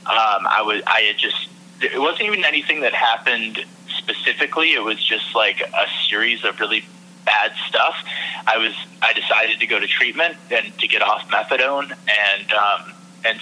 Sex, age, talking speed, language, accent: male, 20-39, 175 wpm, English, American